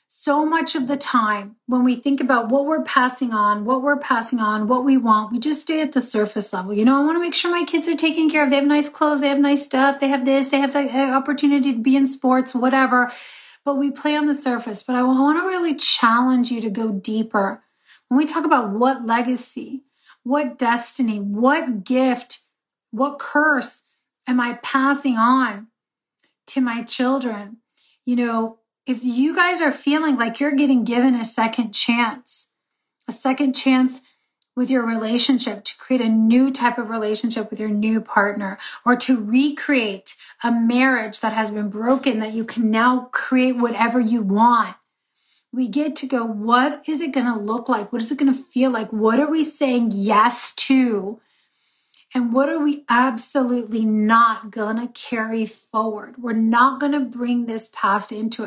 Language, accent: English, American